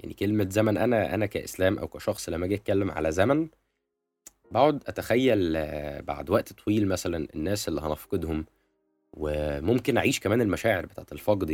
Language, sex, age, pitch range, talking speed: Arabic, male, 20-39, 80-115 Hz, 145 wpm